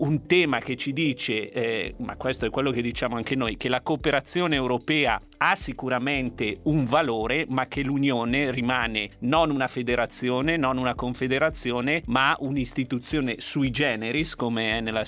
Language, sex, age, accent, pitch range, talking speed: Italian, male, 40-59, native, 120-145 Hz, 155 wpm